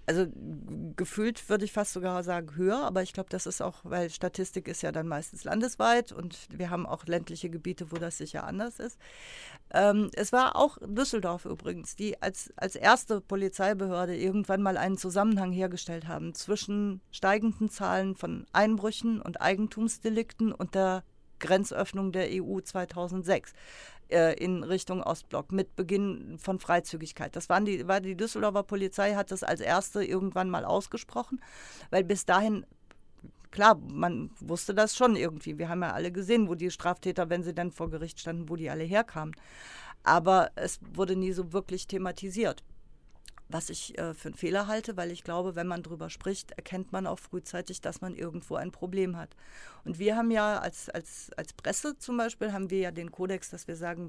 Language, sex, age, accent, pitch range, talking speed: German, female, 50-69, German, 175-210 Hz, 175 wpm